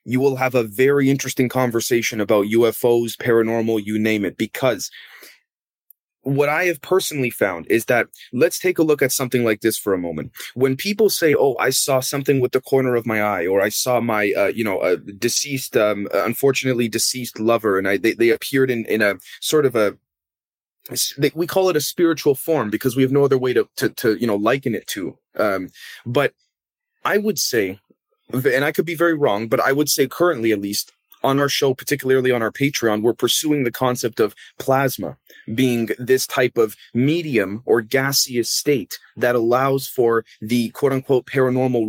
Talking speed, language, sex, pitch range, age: 195 wpm, English, male, 115-140 Hz, 20-39